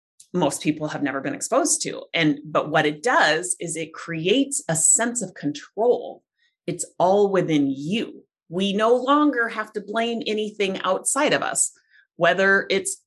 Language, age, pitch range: English, 30-49, 170-250 Hz